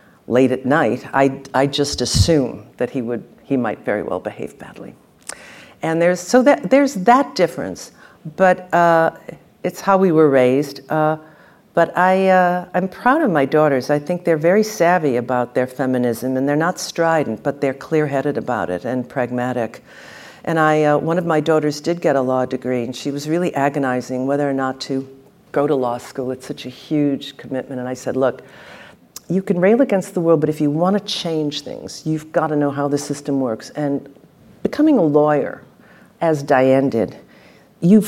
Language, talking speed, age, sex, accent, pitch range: English, 190 wpm, 50-69, female, American, 130-165 Hz